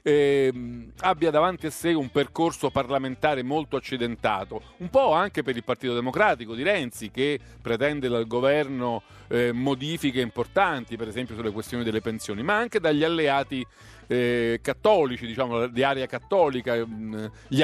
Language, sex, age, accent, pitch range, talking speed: Italian, male, 50-69, native, 120-160 Hz, 150 wpm